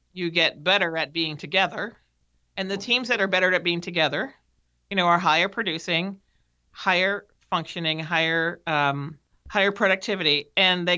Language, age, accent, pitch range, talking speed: English, 40-59, American, 160-195 Hz, 155 wpm